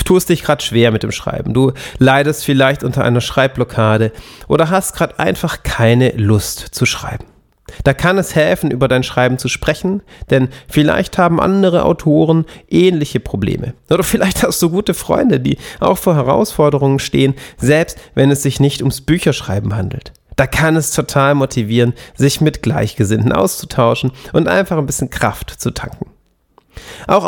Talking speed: 165 wpm